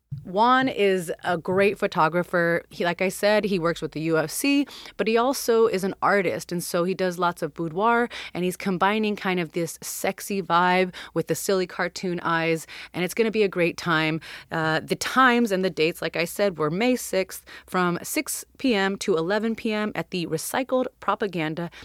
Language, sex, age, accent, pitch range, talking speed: English, female, 30-49, American, 165-210 Hz, 190 wpm